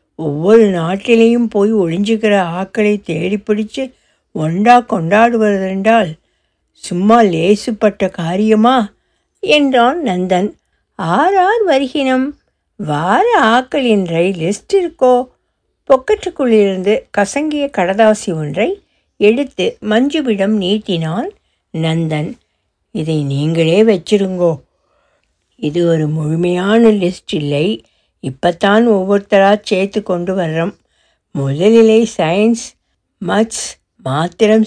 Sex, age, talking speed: female, 60-79, 80 wpm